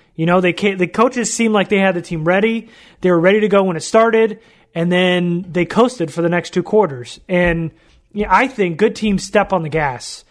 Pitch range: 170-205 Hz